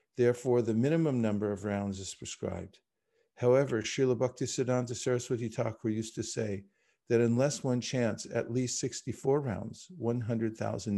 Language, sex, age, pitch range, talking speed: English, male, 50-69, 115-135 Hz, 135 wpm